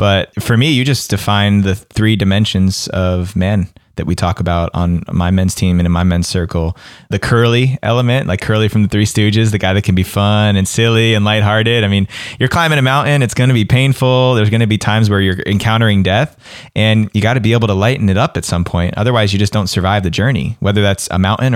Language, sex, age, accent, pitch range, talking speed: English, male, 20-39, American, 95-110 Hz, 240 wpm